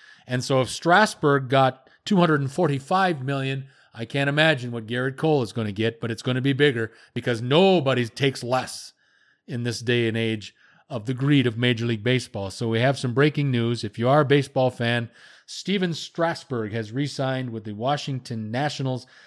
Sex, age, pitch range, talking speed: male, 30-49, 120-140 Hz, 185 wpm